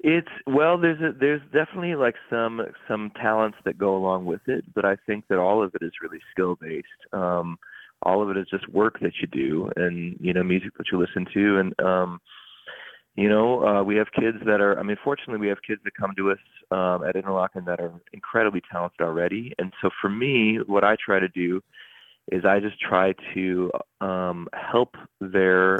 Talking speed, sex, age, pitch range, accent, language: 205 wpm, male, 30-49, 90-105 Hz, American, English